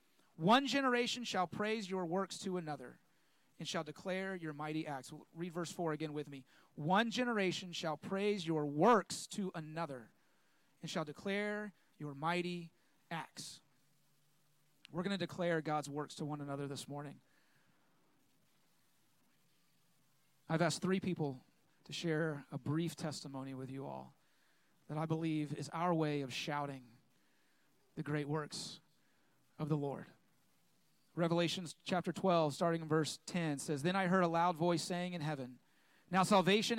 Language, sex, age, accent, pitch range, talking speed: English, male, 30-49, American, 150-185 Hz, 145 wpm